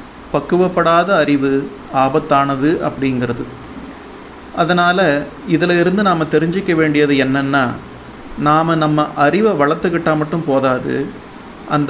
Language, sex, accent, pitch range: Tamil, male, native, 140-175 Hz